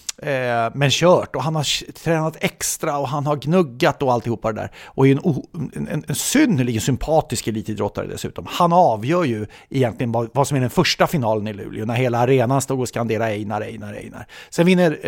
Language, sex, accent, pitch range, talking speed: English, male, Swedish, 120-150 Hz, 195 wpm